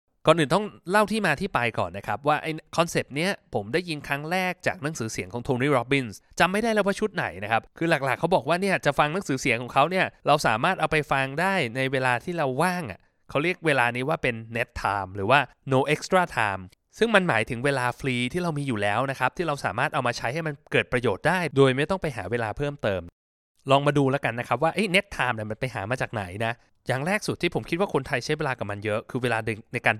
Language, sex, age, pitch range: Thai, male, 20-39, 115-160 Hz